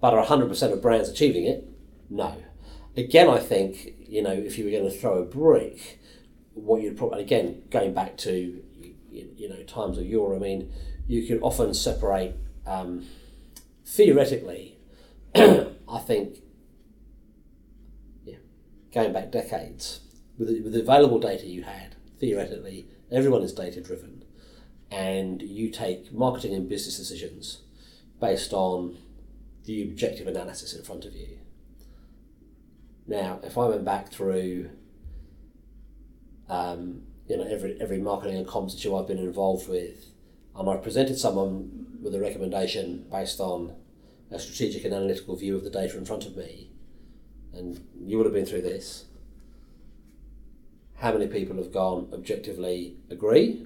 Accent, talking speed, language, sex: British, 145 wpm, English, male